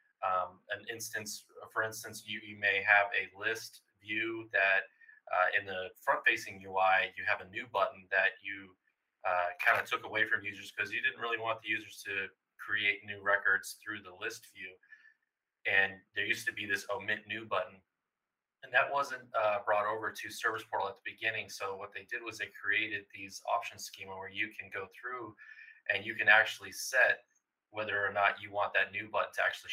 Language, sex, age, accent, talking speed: English, male, 20-39, American, 200 wpm